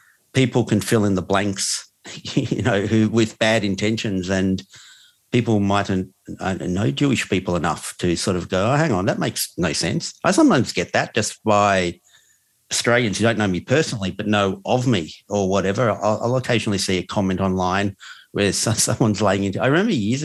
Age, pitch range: 50-69, 100-130 Hz